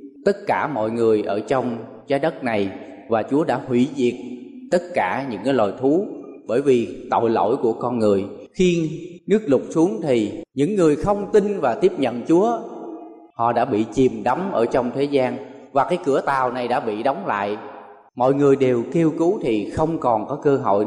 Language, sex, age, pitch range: Thai, male, 20-39, 125-170 Hz